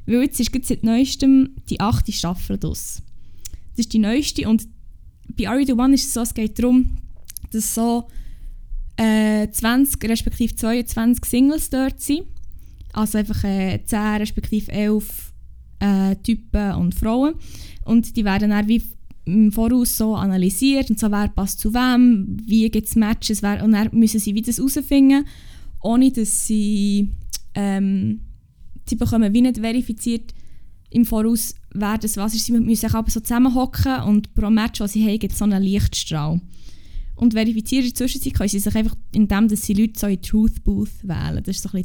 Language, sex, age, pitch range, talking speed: German, female, 10-29, 195-235 Hz, 170 wpm